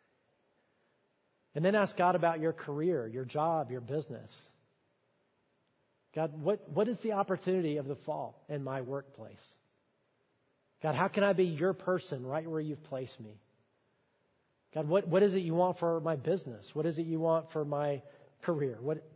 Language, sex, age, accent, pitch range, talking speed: English, male, 40-59, American, 140-180 Hz, 170 wpm